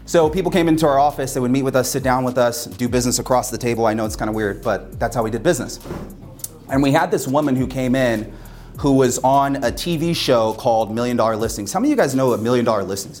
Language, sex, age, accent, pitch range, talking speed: English, male, 30-49, American, 120-145 Hz, 275 wpm